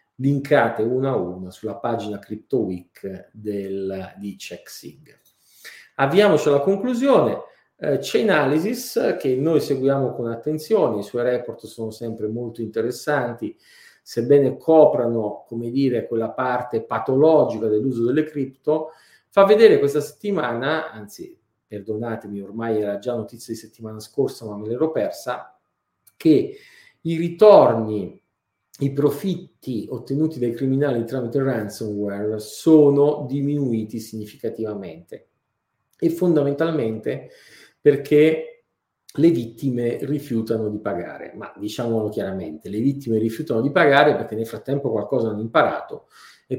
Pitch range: 110-150 Hz